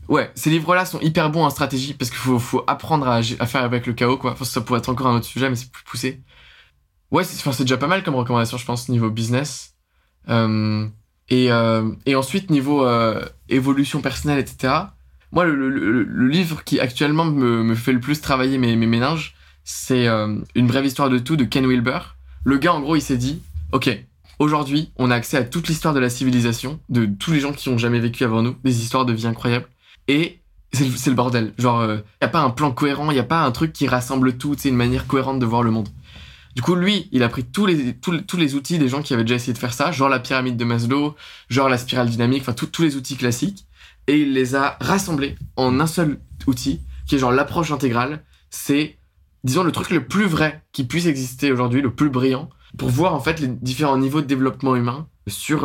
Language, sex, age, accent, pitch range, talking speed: French, male, 20-39, French, 120-145 Hz, 235 wpm